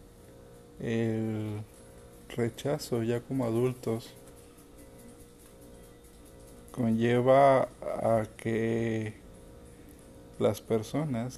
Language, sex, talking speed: Spanish, male, 55 wpm